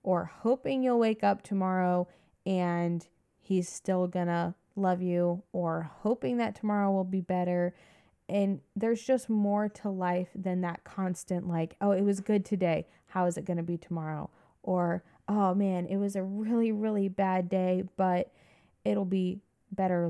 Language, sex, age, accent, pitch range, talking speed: English, female, 20-39, American, 180-210 Hz, 165 wpm